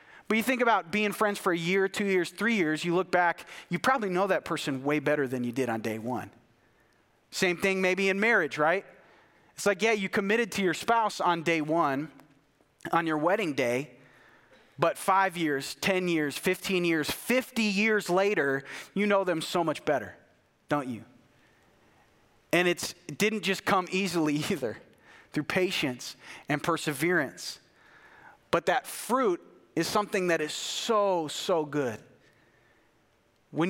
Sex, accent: male, American